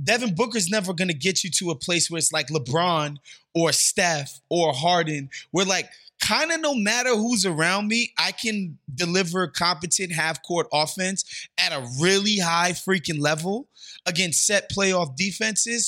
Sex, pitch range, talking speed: male, 160-210 Hz, 165 wpm